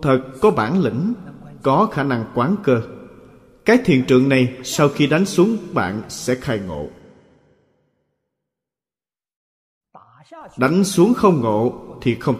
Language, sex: Vietnamese, male